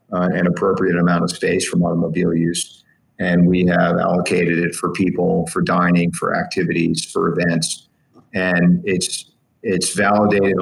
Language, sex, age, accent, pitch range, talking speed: English, male, 40-59, American, 85-95 Hz, 145 wpm